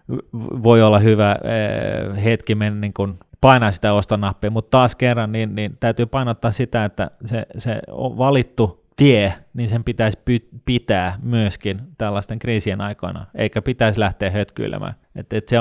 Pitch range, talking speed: 95-115 Hz, 135 wpm